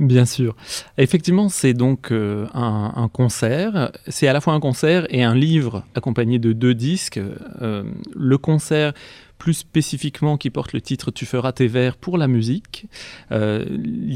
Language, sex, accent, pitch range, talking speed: French, male, French, 115-150 Hz, 175 wpm